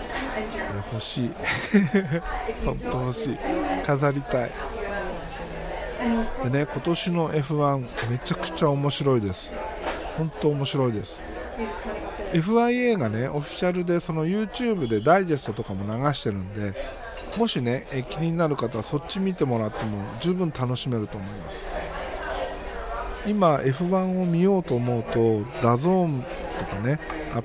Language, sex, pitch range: Japanese, male, 120-180 Hz